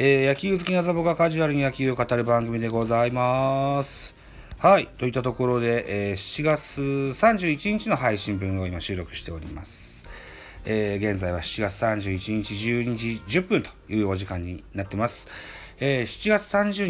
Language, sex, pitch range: Japanese, male, 95-155 Hz